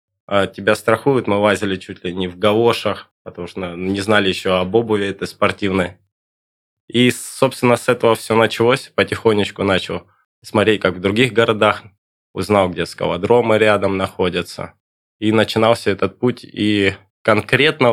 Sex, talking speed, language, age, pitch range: male, 140 wpm, Russian, 20-39, 90-110 Hz